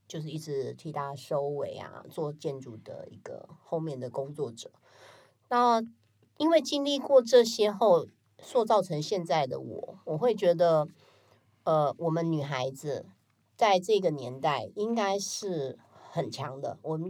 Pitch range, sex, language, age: 135-175 Hz, female, Chinese, 30-49